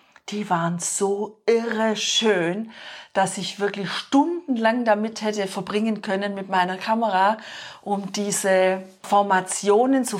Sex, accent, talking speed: female, German, 120 wpm